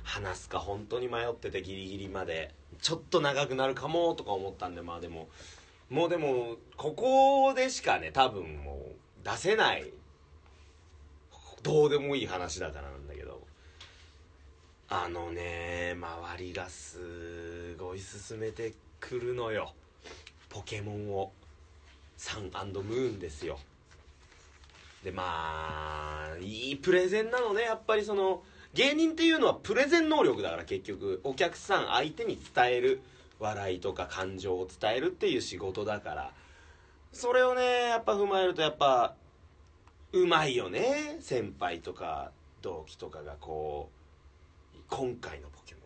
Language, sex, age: Japanese, male, 30-49